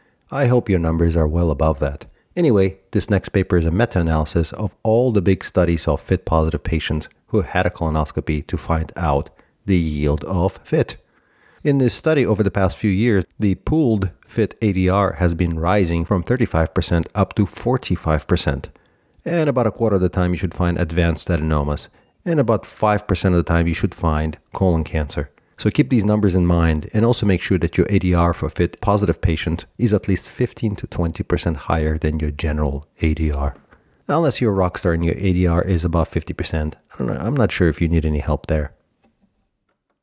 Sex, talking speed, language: male, 185 wpm, English